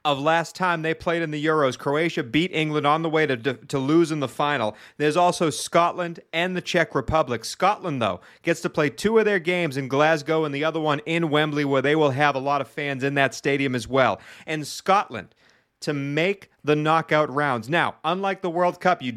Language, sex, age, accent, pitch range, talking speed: English, male, 40-59, American, 140-160 Hz, 220 wpm